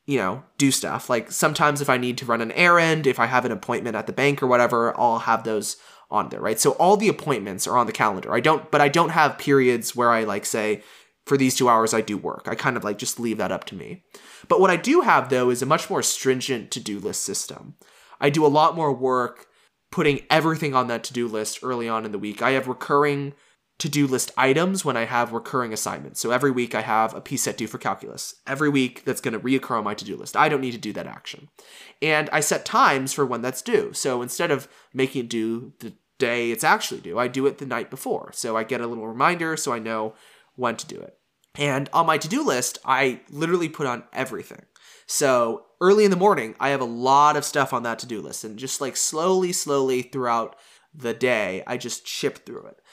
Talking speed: 240 wpm